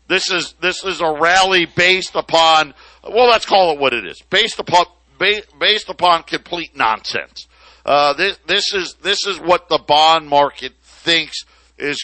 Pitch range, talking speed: 125-165 Hz, 165 wpm